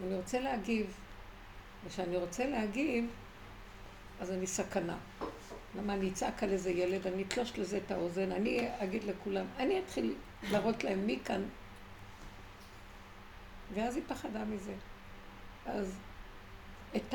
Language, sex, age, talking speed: Hebrew, female, 60-79, 120 wpm